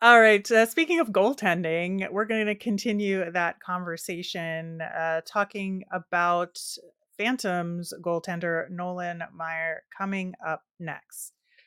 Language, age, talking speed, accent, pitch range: English, 30-49, 115 wpm, American, 165-200 Hz